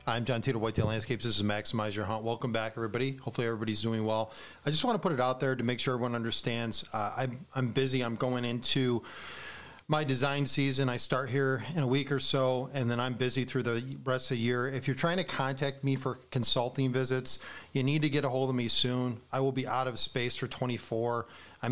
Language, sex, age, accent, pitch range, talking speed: English, male, 40-59, American, 125-145 Hz, 240 wpm